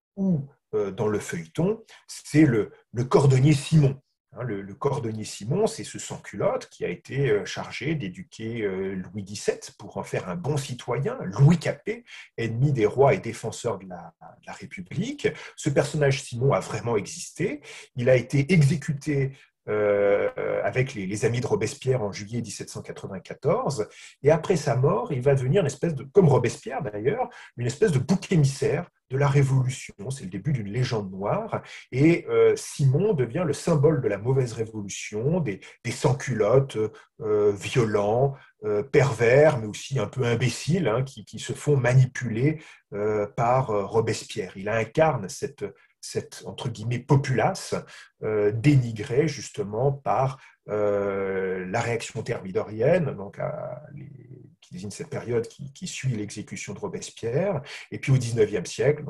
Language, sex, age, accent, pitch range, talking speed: French, male, 40-59, French, 110-150 Hz, 155 wpm